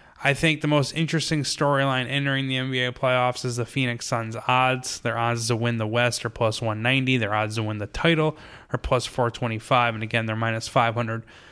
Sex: male